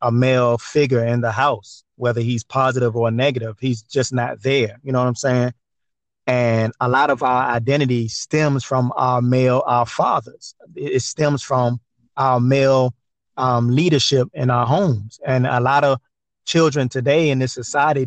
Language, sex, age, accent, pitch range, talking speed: English, male, 30-49, American, 120-135 Hz, 170 wpm